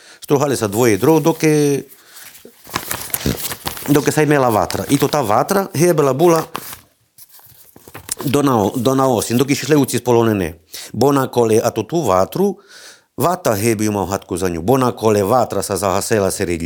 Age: 50-69